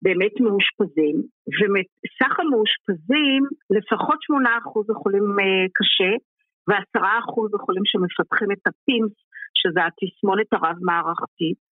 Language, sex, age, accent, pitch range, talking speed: Hebrew, female, 50-69, native, 215-340 Hz, 80 wpm